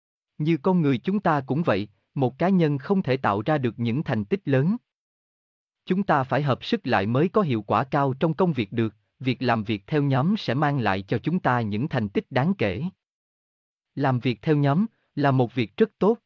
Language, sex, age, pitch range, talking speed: Vietnamese, male, 20-39, 110-165 Hz, 220 wpm